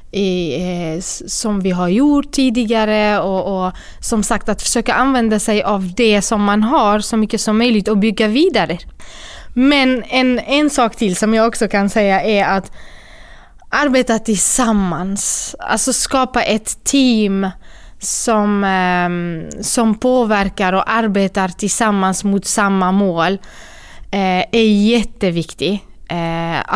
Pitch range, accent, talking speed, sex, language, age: 190-230 Hz, native, 125 wpm, female, Swedish, 20-39